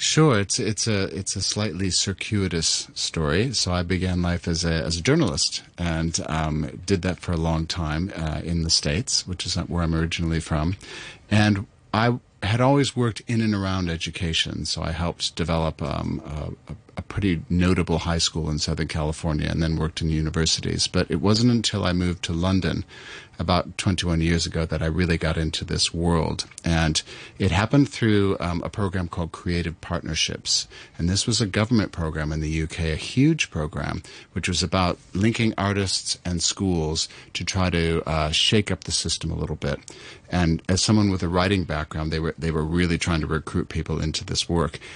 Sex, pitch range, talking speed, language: male, 80-100 Hz, 190 wpm, English